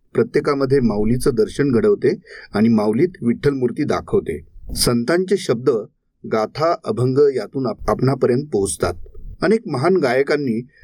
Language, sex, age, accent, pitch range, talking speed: Marathi, male, 40-59, native, 115-165 Hz, 100 wpm